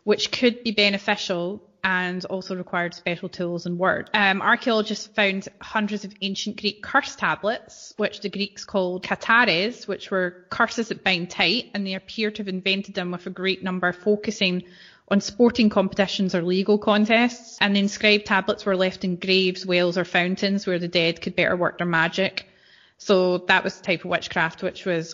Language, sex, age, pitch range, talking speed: English, female, 20-39, 185-215 Hz, 185 wpm